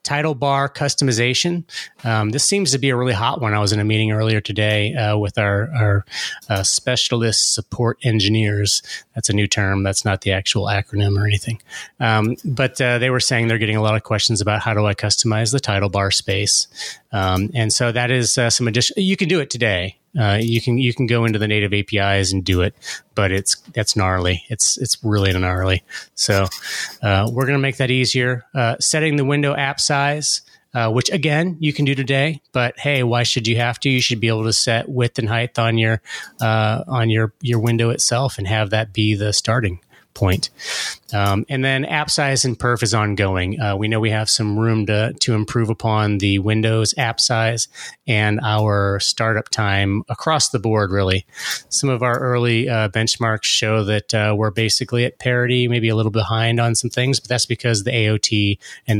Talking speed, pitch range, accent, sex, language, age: 205 wpm, 105-125 Hz, American, male, English, 30-49